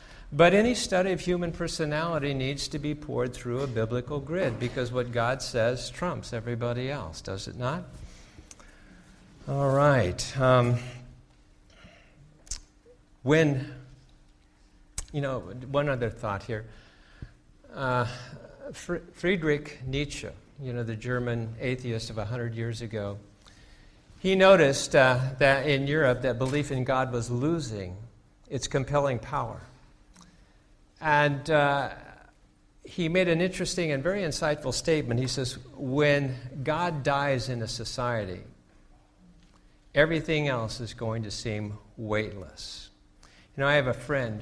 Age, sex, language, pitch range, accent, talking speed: 50-69, male, English, 115-145 Hz, American, 125 wpm